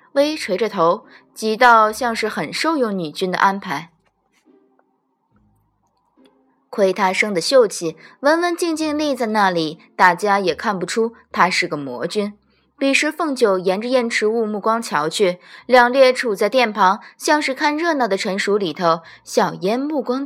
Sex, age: female, 20-39